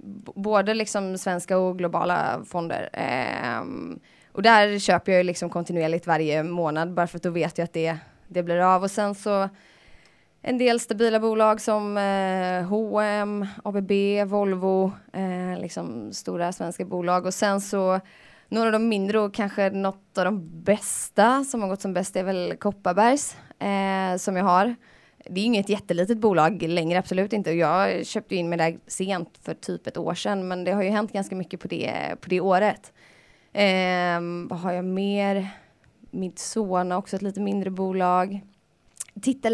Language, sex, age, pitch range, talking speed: Swedish, female, 20-39, 180-210 Hz, 160 wpm